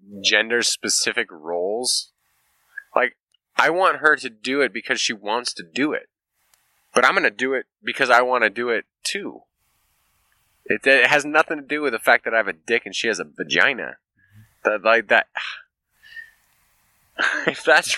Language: English